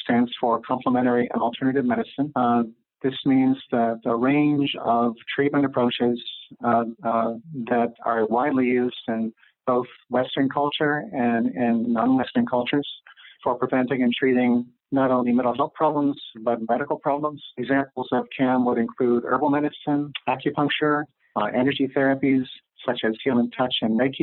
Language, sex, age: English, male, 50-69